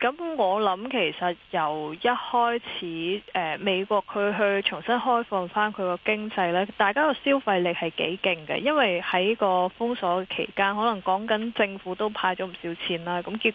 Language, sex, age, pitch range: Chinese, female, 20-39, 180-215 Hz